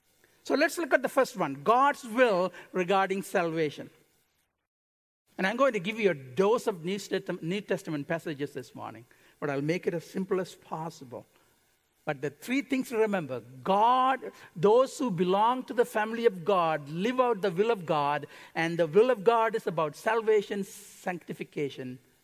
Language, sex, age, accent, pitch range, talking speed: English, male, 60-79, Indian, 155-230 Hz, 170 wpm